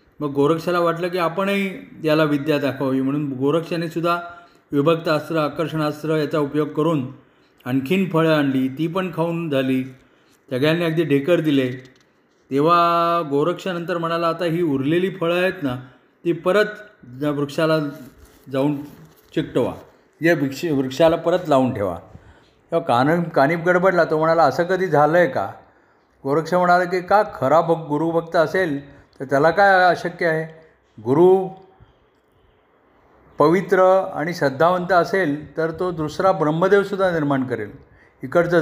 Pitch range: 140-175 Hz